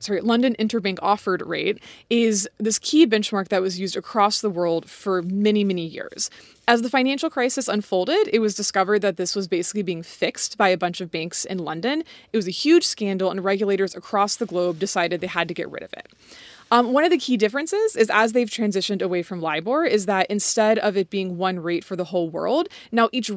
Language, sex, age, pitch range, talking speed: English, female, 20-39, 190-255 Hz, 220 wpm